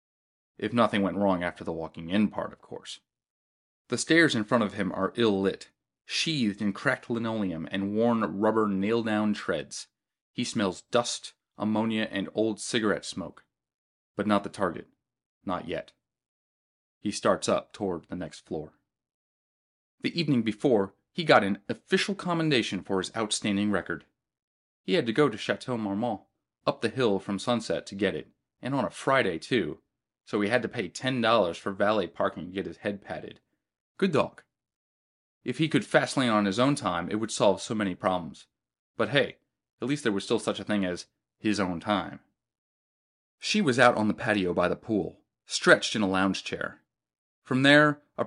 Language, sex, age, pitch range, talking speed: English, male, 30-49, 100-130 Hz, 175 wpm